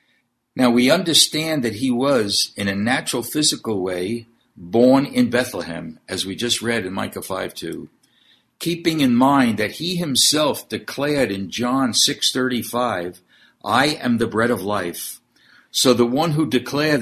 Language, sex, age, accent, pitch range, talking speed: English, male, 60-79, American, 100-150 Hz, 150 wpm